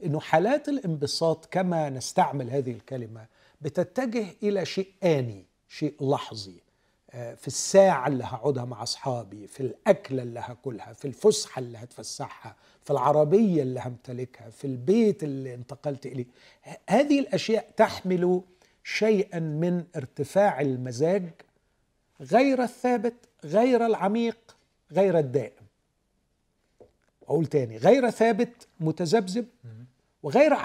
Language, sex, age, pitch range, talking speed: Arabic, male, 50-69, 135-200 Hz, 110 wpm